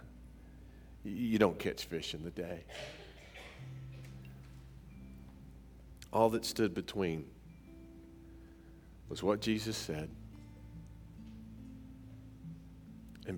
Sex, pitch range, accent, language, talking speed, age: male, 75-120 Hz, American, English, 70 wpm, 40-59